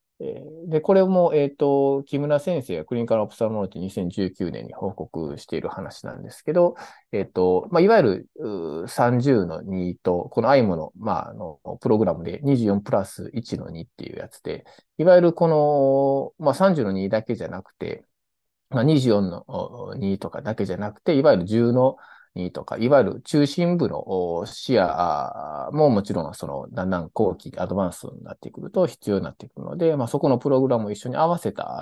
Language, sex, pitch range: Japanese, male, 105-160 Hz